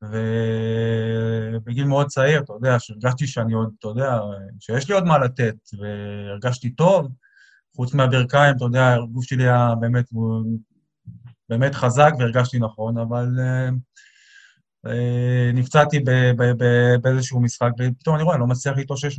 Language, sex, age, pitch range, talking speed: Hebrew, male, 20-39, 115-140 Hz, 130 wpm